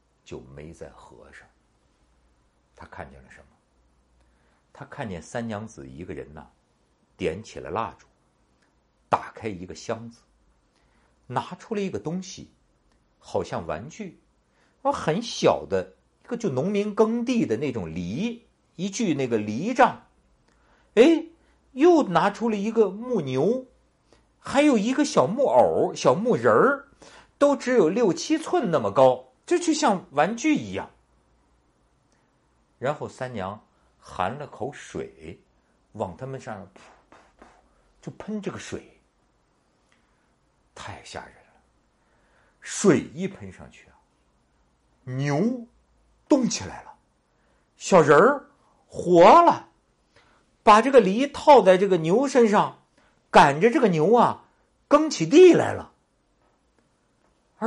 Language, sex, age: Chinese, male, 50-69